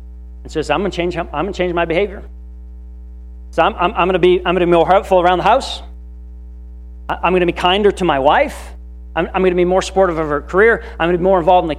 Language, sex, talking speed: English, male, 235 wpm